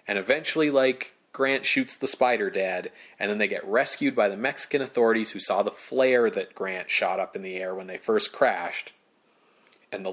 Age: 30-49